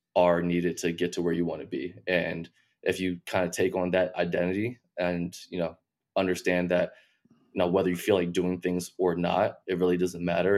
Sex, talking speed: male, 215 wpm